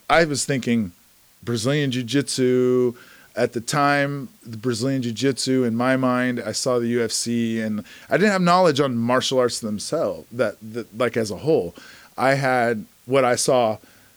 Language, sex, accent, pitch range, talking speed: English, male, American, 120-150 Hz, 160 wpm